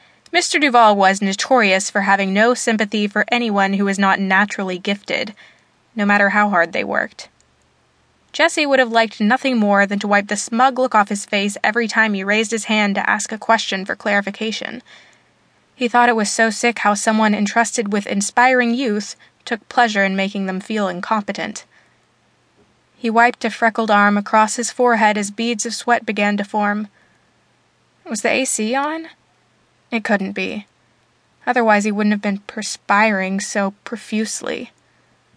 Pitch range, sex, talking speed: 200-235 Hz, female, 165 wpm